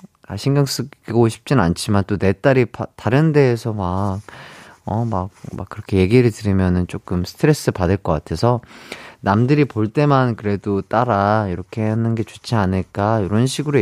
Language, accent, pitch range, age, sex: Korean, native, 95-145 Hz, 30-49, male